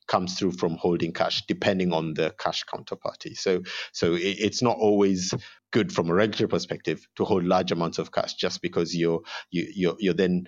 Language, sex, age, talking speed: English, male, 50-69, 190 wpm